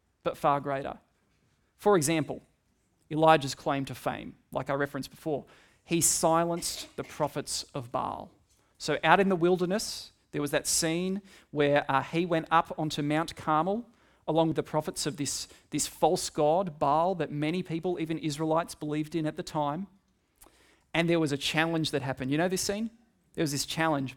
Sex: male